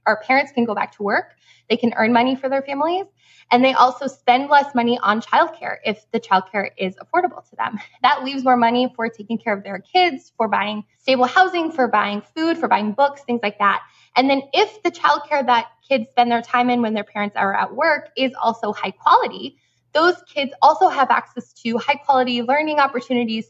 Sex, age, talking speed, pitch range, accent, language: female, 10-29, 210 wpm, 210-270 Hz, American, English